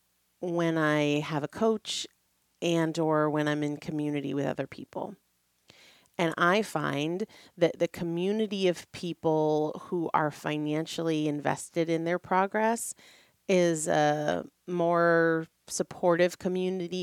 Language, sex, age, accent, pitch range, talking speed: English, female, 30-49, American, 150-185 Hz, 120 wpm